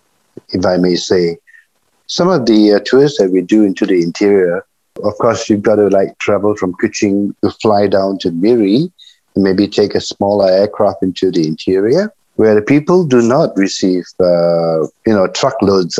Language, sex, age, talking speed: English, male, 50-69, 180 wpm